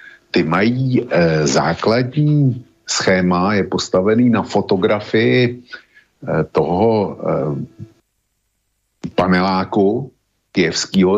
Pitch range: 90-110 Hz